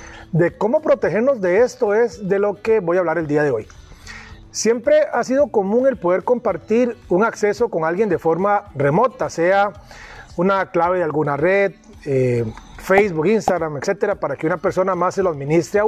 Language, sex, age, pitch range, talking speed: Spanish, male, 40-59, 175-235 Hz, 185 wpm